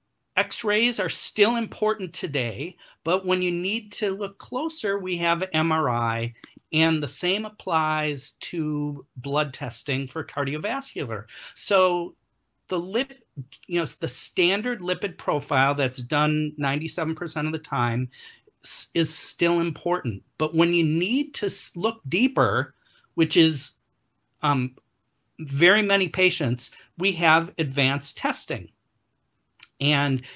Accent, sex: American, male